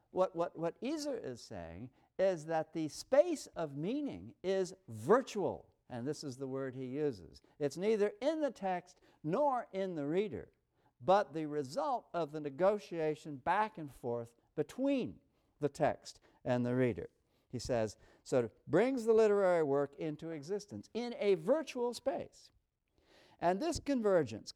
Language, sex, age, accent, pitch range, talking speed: English, male, 60-79, American, 125-195 Hz, 150 wpm